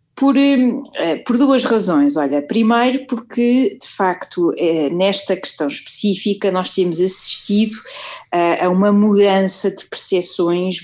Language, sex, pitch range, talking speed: Portuguese, female, 175-225 Hz, 110 wpm